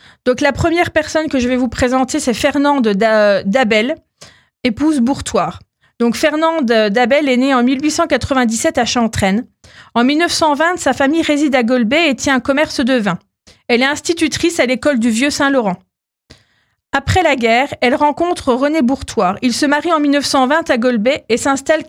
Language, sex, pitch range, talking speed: French, female, 245-295 Hz, 165 wpm